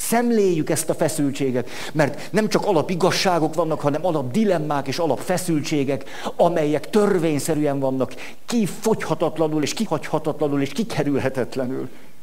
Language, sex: Hungarian, male